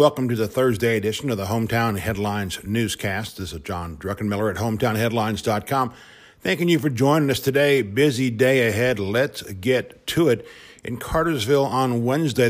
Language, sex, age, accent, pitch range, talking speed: English, male, 50-69, American, 110-140 Hz, 160 wpm